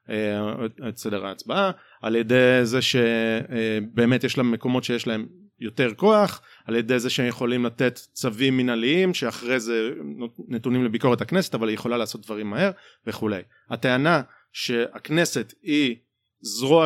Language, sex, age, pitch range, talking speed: Hebrew, male, 30-49, 120-155 Hz, 140 wpm